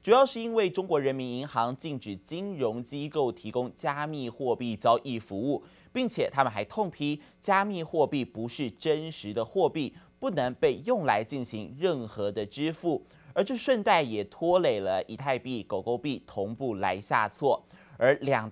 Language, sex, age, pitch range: Chinese, male, 20-39, 120-165 Hz